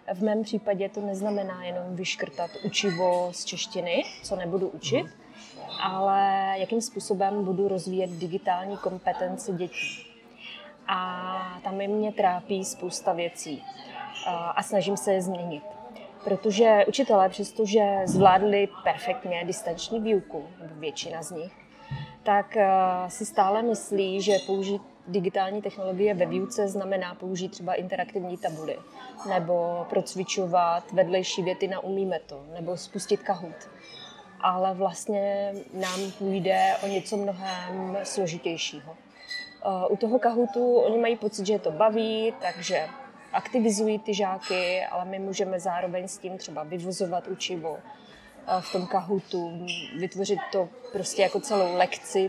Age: 20-39